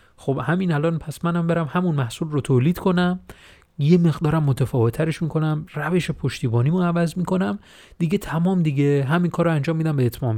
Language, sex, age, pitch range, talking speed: Persian, male, 30-49, 115-160 Hz, 170 wpm